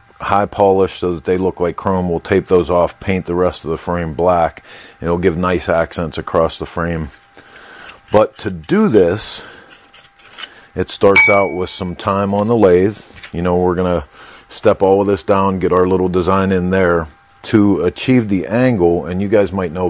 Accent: American